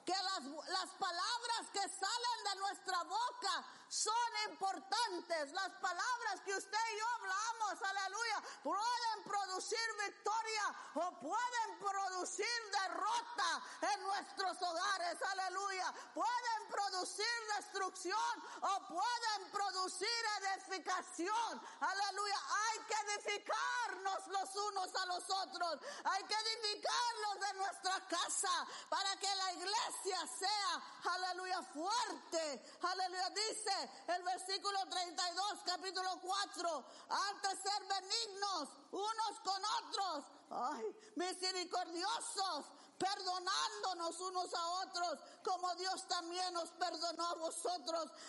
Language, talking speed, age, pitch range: English, 105 wpm, 40-59, 360-415 Hz